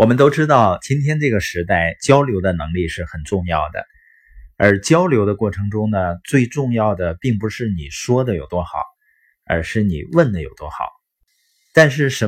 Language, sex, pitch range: Chinese, male, 95-140 Hz